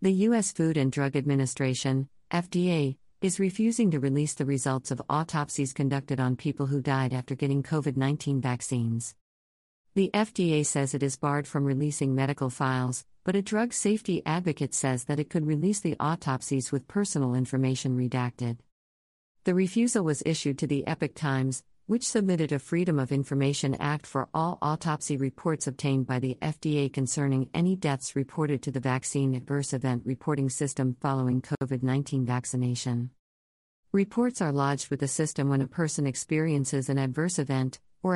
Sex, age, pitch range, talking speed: female, 50-69, 130-160 Hz, 160 wpm